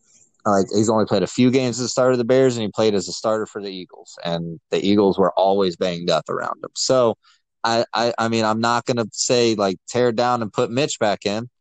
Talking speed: 260 wpm